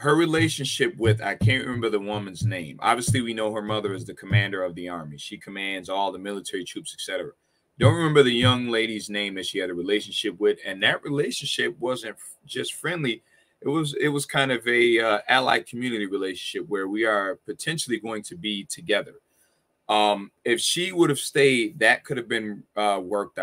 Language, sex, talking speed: English, male, 195 wpm